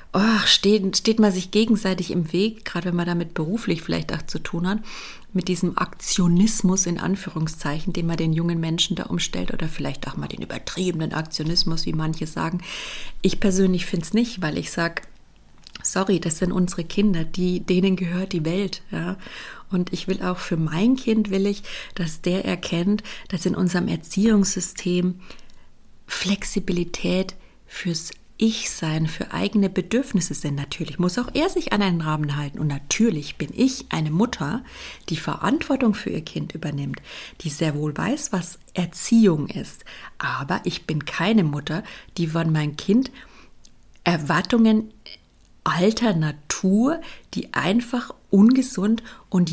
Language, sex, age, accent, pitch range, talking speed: German, female, 30-49, German, 165-205 Hz, 155 wpm